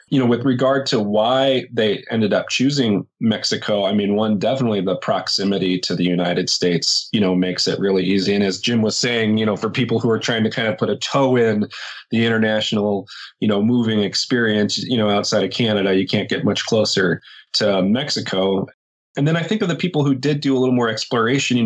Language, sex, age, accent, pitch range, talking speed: English, male, 30-49, American, 100-120 Hz, 220 wpm